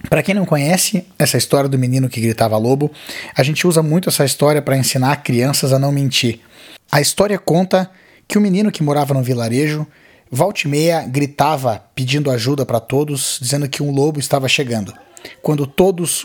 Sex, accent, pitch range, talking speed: male, Brazilian, 135-170 Hz, 175 wpm